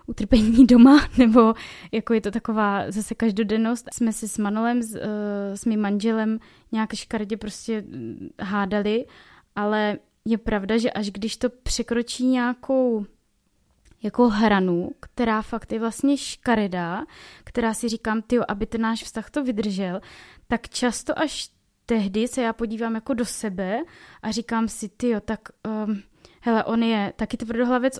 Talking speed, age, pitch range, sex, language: 145 wpm, 20-39, 215-245 Hz, female, Czech